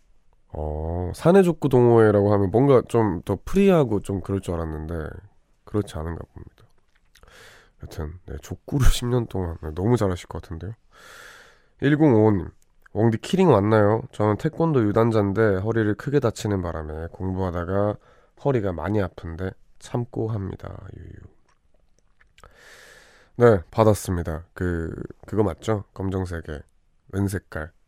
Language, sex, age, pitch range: Korean, male, 20-39, 90-115 Hz